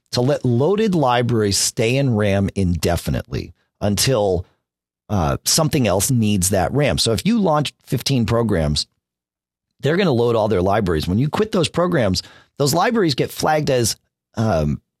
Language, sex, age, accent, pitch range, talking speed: English, male, 40-59, American, 100-165 Hz, 155 wpm